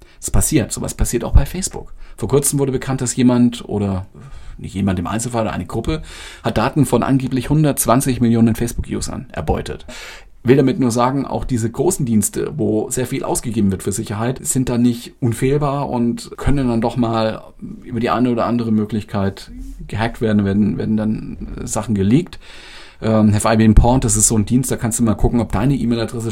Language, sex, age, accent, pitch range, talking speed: German, male, 40-59, German, 110-130 Hz, 190 wpm